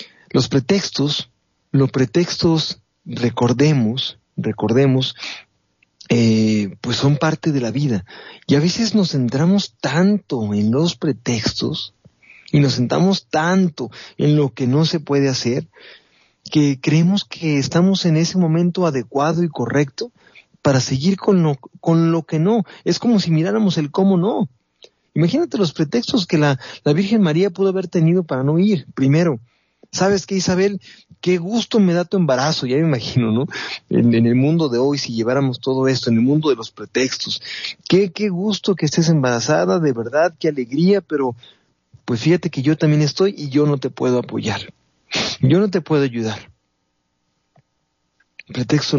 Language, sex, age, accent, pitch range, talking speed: Spanish, male, 40-59, Mexican, 130-180 Hz, 160 wpm